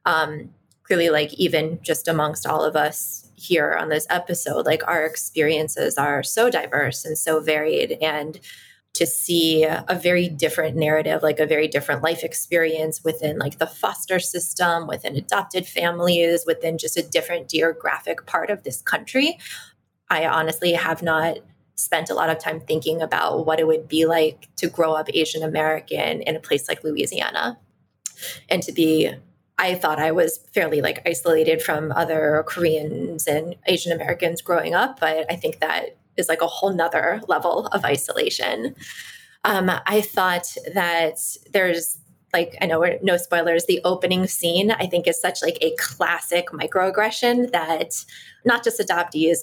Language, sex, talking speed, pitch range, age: English, female, 160 wpm, 160-180 Hz, 20-39